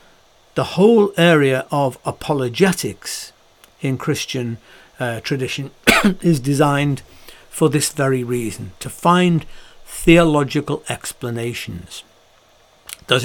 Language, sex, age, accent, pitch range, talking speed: English, male, 60-79, British, 130-170 Hz, 90 wpm